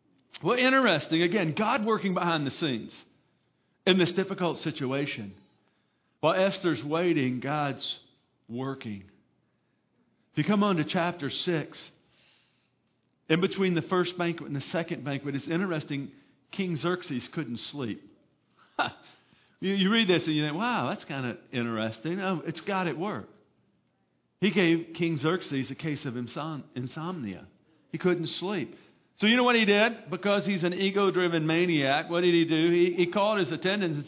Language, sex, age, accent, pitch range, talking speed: English, male, 50-69, American, 140-185 Hz, 155 wpm